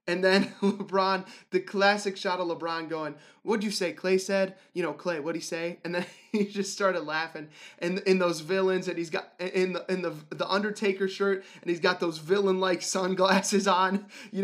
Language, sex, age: English, male, 20-39